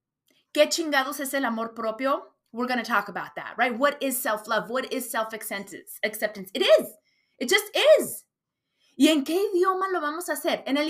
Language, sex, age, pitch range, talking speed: English, female, 30-49, 240-320 Hz, 205 wpm